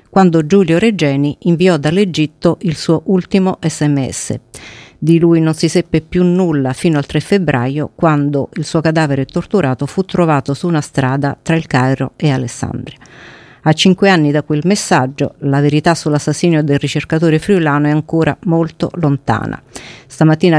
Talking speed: 150 wpm